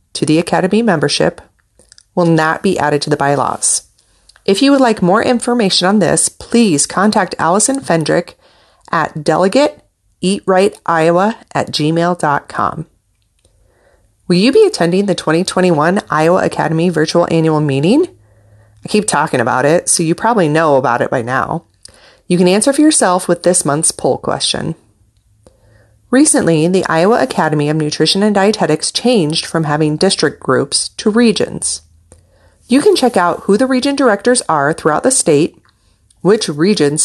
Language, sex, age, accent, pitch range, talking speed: English, female, 30-49, American, 130-195 Hz, 145 wpm